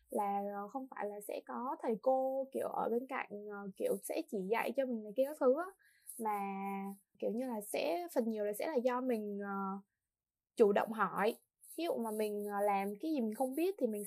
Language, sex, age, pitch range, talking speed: Vietnamese, female, 20-39, 205-275 Hz, 205 wpm